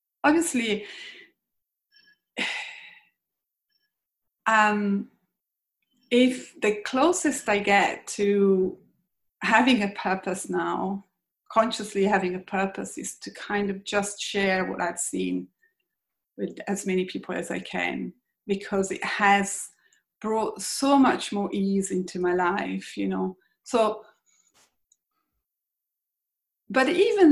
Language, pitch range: English, 190-230 Hz